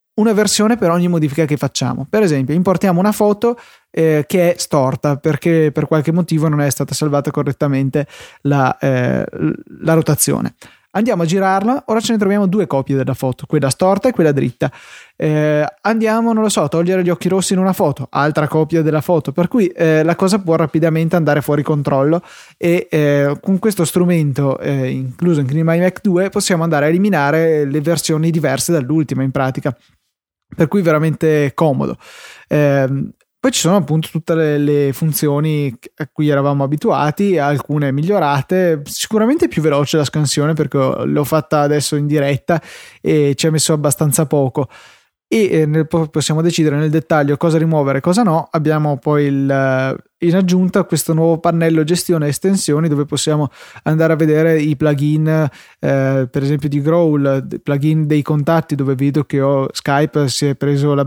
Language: Italian